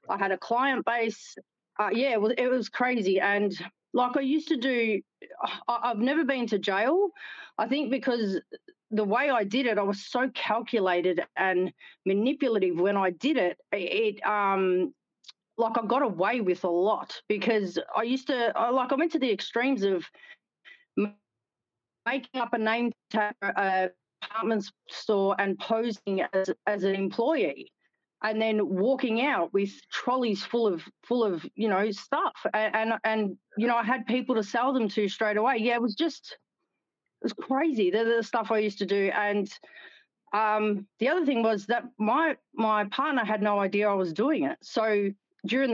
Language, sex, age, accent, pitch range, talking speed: English, female, 40-59, Australian, 200-255 Hz, 180 wpm